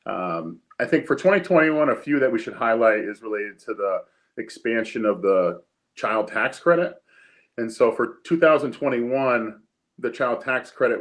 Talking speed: 160 wpm